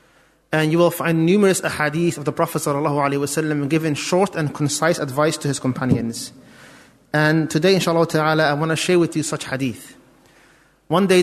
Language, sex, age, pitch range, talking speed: English, male, 30-49, 150-180 Hz, 170 wpm